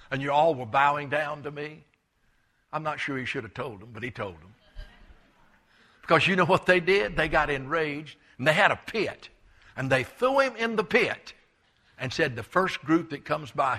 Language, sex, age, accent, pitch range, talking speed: English, male, 60-79, American, 130-170 Hz, 215 wpm